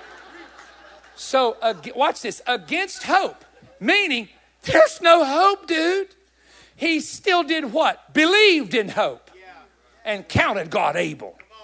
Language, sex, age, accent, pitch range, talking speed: English, male, 50-69, American, 185-275 Hz, 115 wpm